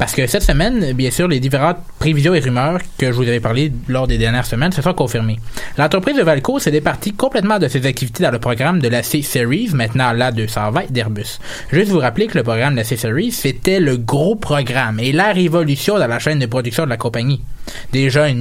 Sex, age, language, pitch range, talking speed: male, 20-39, French, 120-160 Hz, 220 wpm